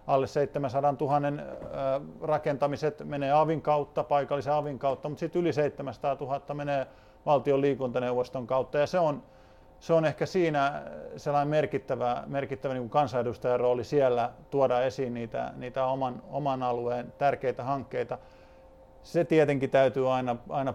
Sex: male